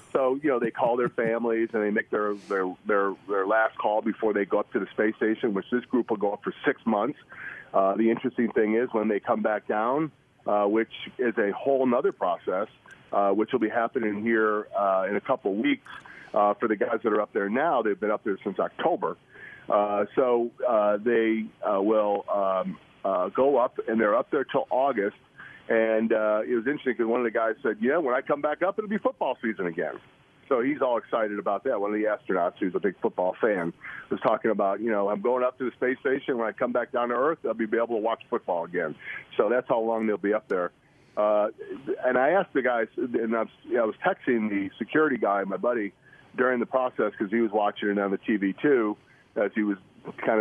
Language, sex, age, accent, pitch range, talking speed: English, male, 40-59, American, 105-125 Hz, 230 wpm